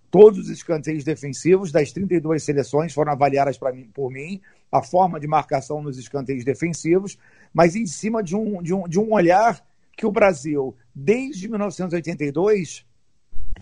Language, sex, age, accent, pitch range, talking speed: English, male, 50-69, Brazilian, 130-170 Hz, 150 wpm